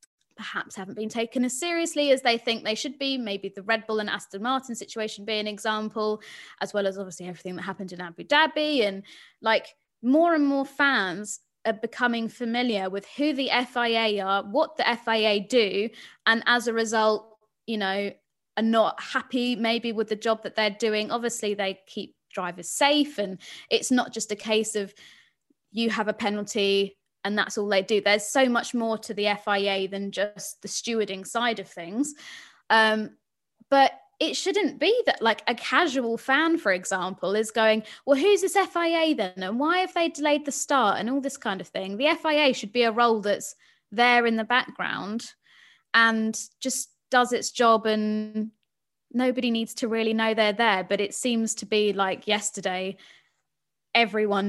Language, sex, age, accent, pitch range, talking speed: English, female, 20-39, British, 205-255 Hz, 185 wpm